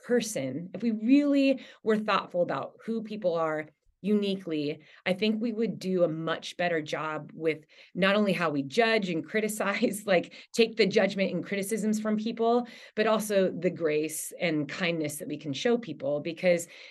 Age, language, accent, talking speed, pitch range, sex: 30-49, English, American, 170 wpm, 170-215 Hz, female